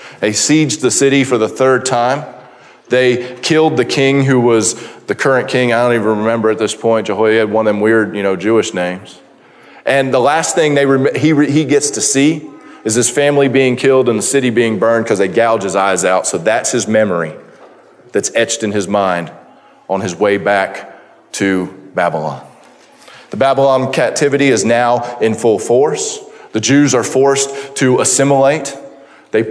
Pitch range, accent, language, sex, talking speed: 115-140 Hz, American, English, male, 180 wpm